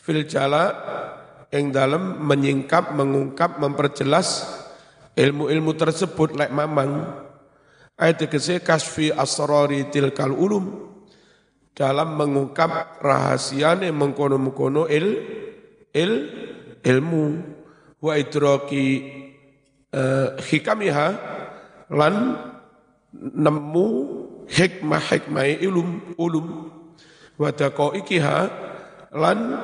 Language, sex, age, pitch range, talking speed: Indonesian, male, 50-69, 135-155 Hz, 70 wpm